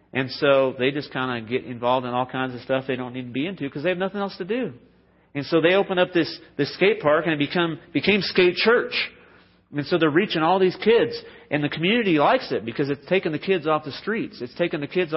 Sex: male